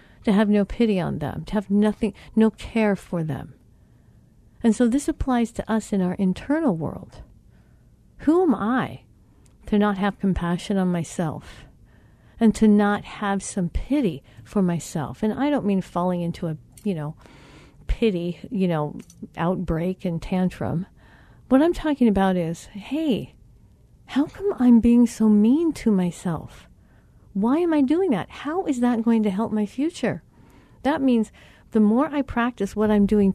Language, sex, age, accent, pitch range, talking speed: English, female, 50-69, American, 180-235 Hz, 165 wpm